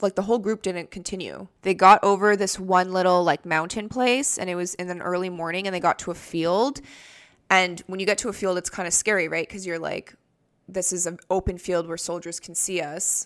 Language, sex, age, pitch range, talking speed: English, female, 20-39, 180-215 Hz, 240 wpm